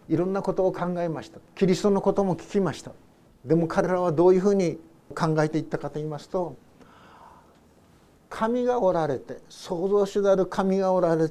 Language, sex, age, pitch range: Japanese, male, 50-69, 150-195 Hz